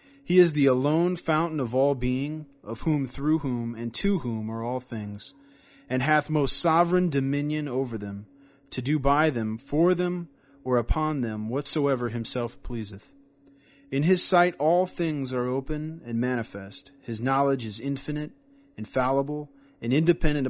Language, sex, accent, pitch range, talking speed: English, male, American, 120-150 Hz, 155 wpm